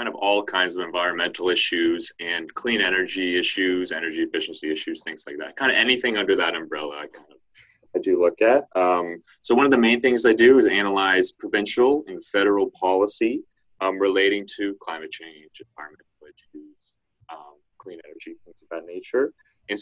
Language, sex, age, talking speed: English, male, 30-49, 180 wpm